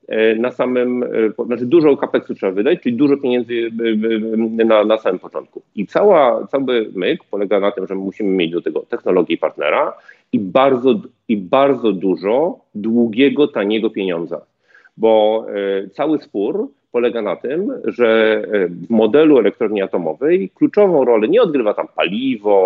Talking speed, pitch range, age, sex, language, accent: 150 wpm, 105-125 Hz, 40-59, male, Polish, native